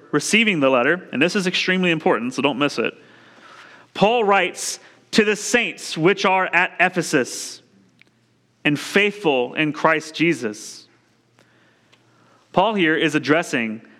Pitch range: 155-210 Hz